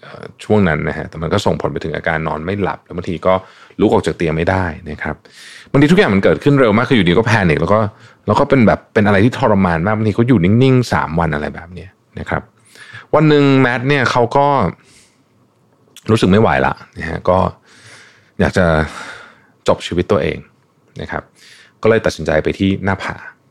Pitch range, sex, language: 85-110 Hz, male, Thai